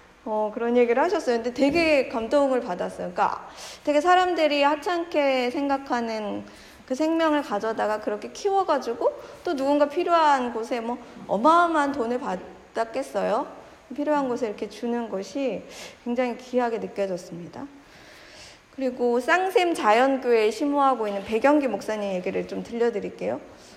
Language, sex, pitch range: Korean, female, 220-290 Hz